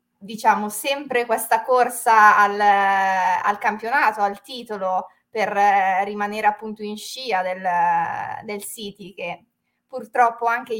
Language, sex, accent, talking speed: Italian, female, native, 115 wpm